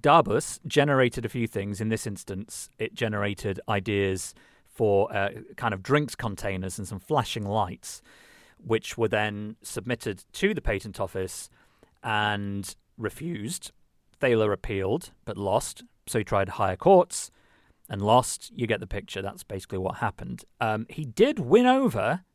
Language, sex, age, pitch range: English, male, 40-59, 100-140 Hz